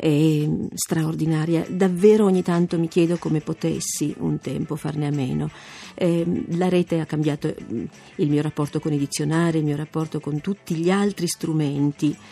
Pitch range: 155-185 Hz